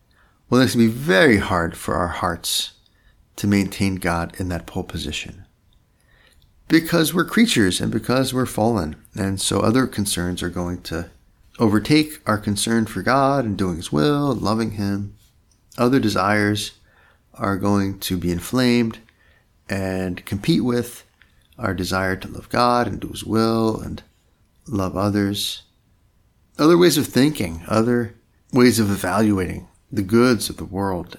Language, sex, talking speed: English, male, 150 wpm